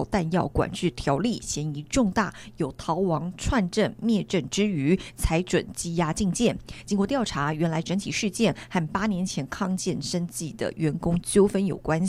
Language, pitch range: Chinese, 165-205 Hz